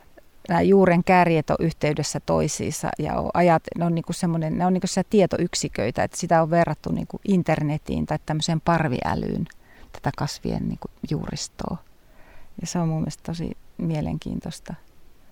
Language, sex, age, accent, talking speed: Finnish, female, 30-49, native, 155 wpm